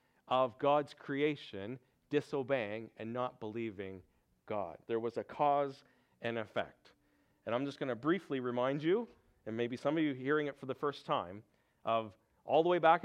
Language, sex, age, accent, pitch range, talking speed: English, male, 40-59, American, 115-150 Hz, 175 wpm